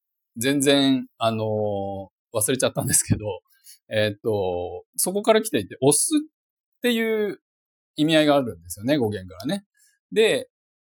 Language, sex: Japanese, male